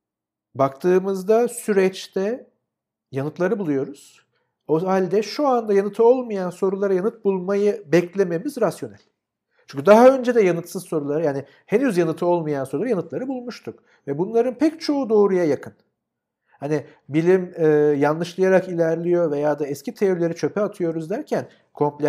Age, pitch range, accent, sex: 50-69, 150-210 Hz, native, male